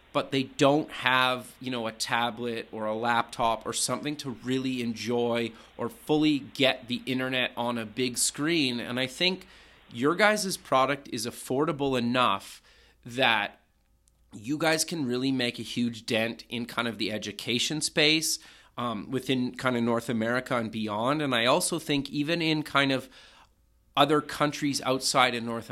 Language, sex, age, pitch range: English, male, 30-49, 120-145 Hz